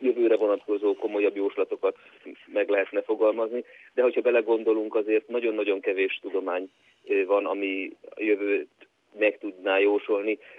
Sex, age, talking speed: male, 30-49, 120 wpm